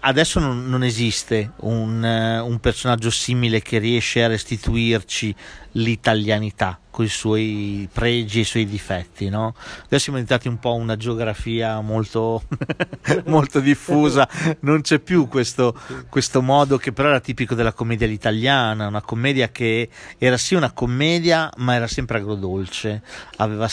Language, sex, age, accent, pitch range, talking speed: Italian, male, 40-59, native, 110-125 Hz, 145 wpm